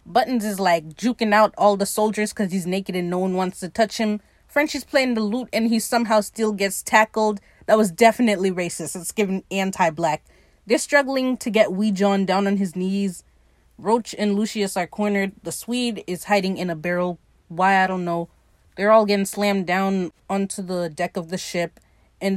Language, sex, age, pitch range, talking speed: English, female, 20-39, 175-220 Hz, 200 wpm